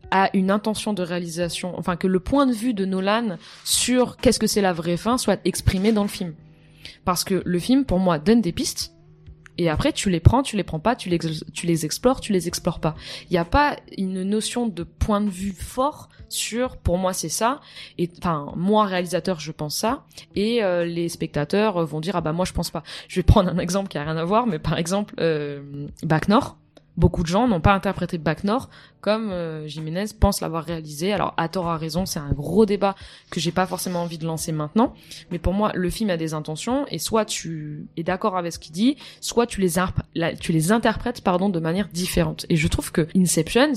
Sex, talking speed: female, 230 wpm